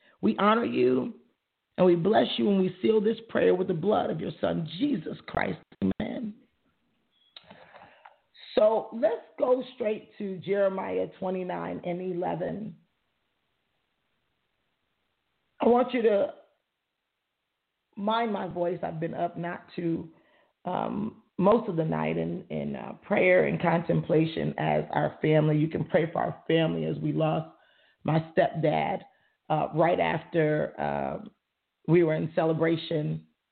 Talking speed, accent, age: 135 wpm, American, 40-59